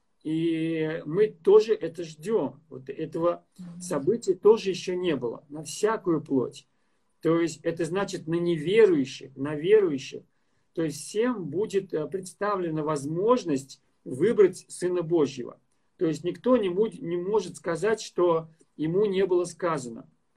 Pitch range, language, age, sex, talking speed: 160-200 Hz, Russian, 50-69, male, 130 wpm